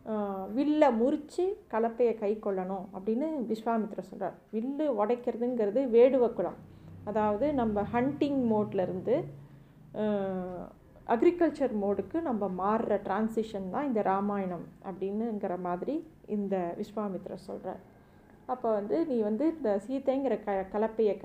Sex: female